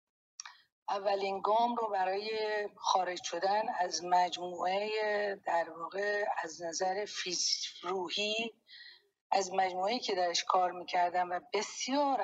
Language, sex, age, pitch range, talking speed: Persian, female, 40-59, 180-220 Hz, 105 wpm